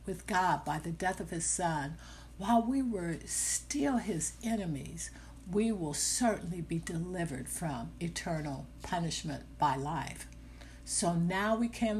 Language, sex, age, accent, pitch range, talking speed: English, female, 60-79, American, 140-170 Hz, 140 wpm